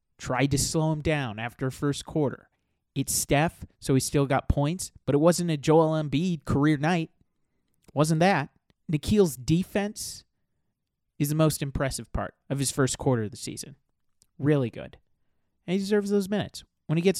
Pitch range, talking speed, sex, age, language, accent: 130-165 Hz, 180 wpm, male, 30-49, English, American